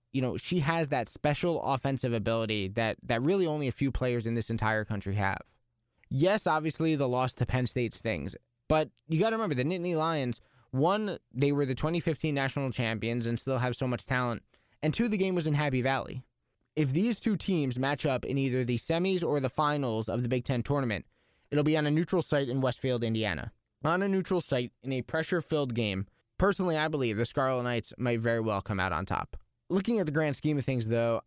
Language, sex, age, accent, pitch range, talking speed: English, male, 20-39, American, 120-150 Hz, 215 wpm